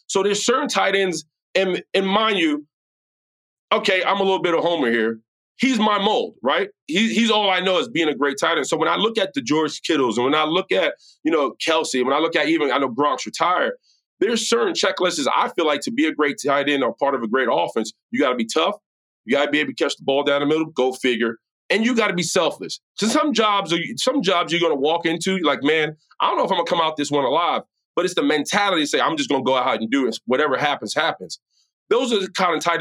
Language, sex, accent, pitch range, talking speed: English, male, American, 140-205 Hz, 265 wpm